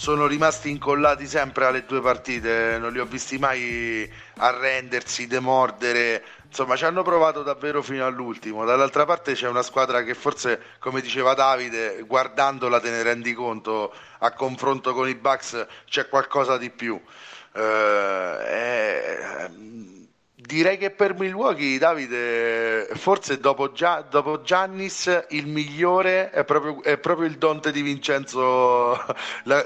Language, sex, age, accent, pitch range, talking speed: Italian, male, 30-49, native, 115-145 Hz, 135 wpm